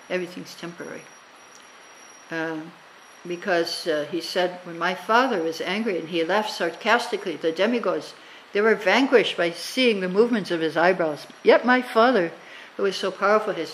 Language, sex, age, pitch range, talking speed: English, female, 60-79, 165-190 Hz, 155 wpm